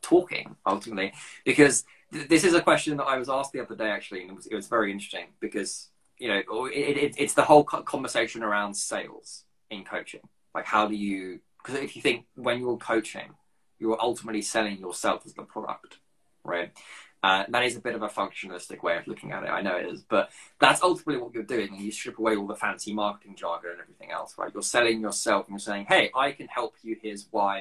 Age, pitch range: 20-39, 100-130 Hz